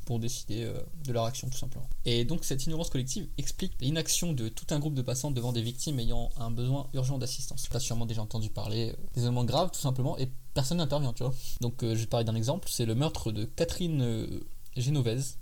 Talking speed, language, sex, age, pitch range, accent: 235 wpm, French, male, 20-39, 115-140 Hz, French